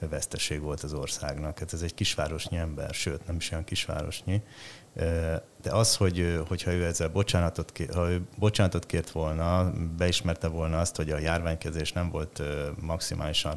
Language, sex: Hungarian, male